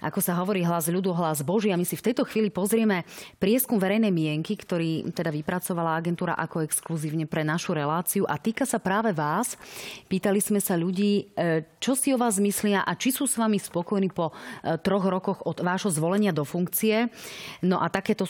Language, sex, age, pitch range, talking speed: Slovak, female, 30-49, 170-210 Hz, 185 wpm